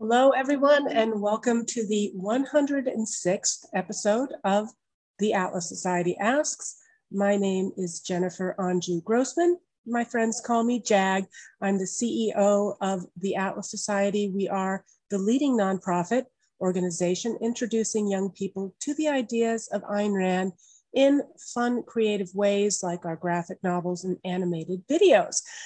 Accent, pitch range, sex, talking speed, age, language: American, 190-250 Hz, female, 135 wpm, 40-59, English